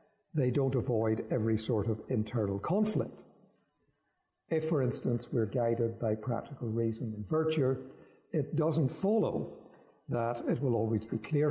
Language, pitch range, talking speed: English, 110-150 Hz, 140 wpm